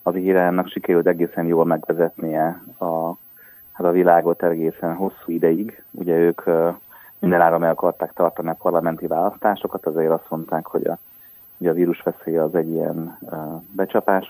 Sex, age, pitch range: male, 30-49, 85-95 Hz